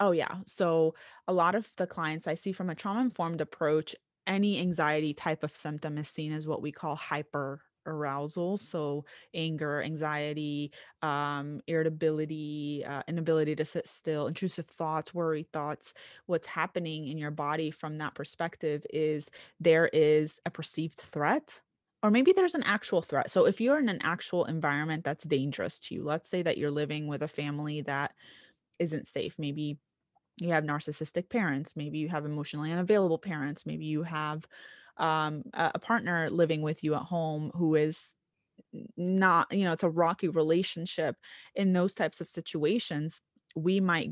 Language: English